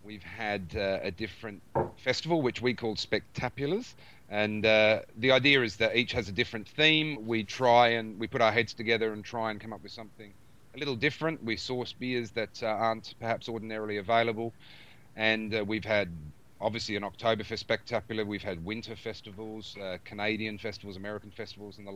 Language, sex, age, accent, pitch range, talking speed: English, male, 30-49, Australian, 105-120 Hz, 185 wpm